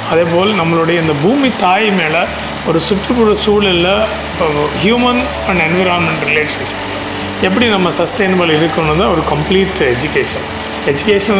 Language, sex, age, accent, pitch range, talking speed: Tamil, male, 30-49, native, 150-200 Hz, 120 wpm